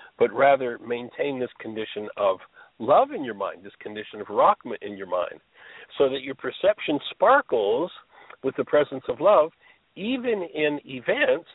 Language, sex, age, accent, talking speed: English, male, 60-79, American, 155 wpm